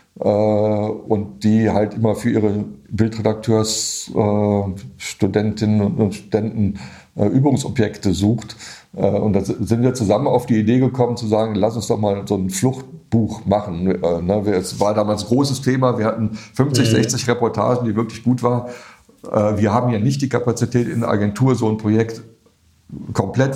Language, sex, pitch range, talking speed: German, male, 105-120 Hz, 150 wpm